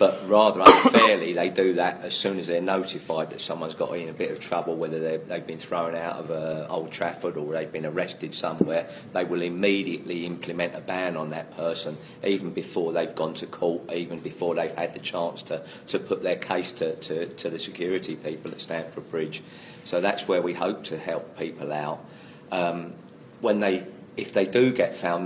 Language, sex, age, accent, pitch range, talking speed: English, male, 40-59, British, 85-95 Hz, 200 wpm